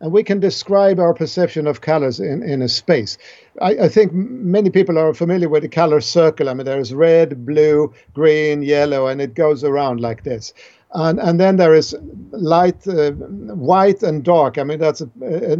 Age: 50-69